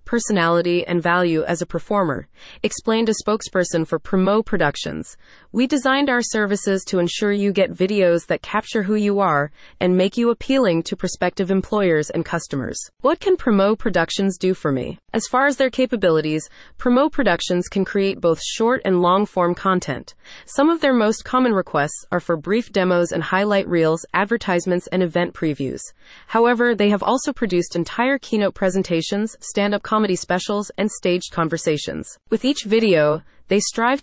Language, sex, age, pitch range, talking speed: English, female, 30-49, 175-230 Hz, 165 wpm